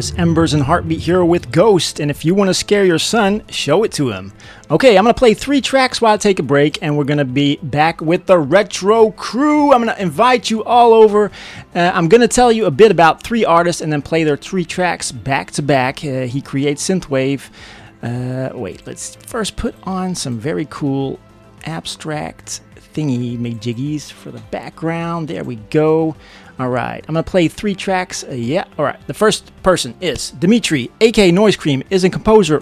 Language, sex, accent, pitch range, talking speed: English, male, American, 135-185 Hz, 195 wpm